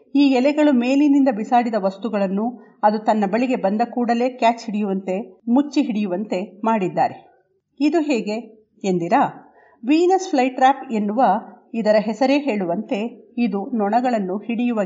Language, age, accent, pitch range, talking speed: Kannada, 50-69, native, 200-250 Hz, 110 wpm